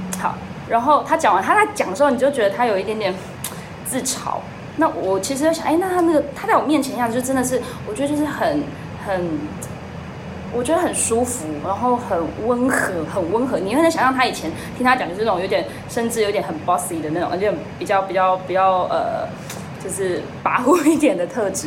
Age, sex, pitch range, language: 20-39, female, 175-245 Hz, Chinese